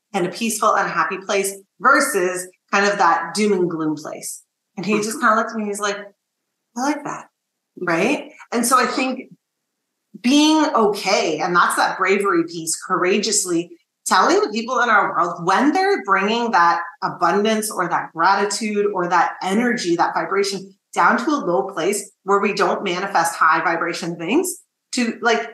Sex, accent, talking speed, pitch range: female, American, 175 wpm, 190-265 Hz